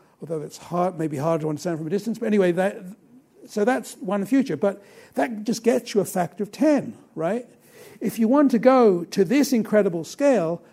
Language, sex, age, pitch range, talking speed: English, male, 60-79, 175-235 Hz, 200 wpm